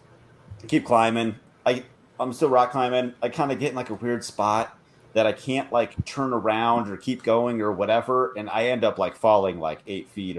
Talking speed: 210 wpm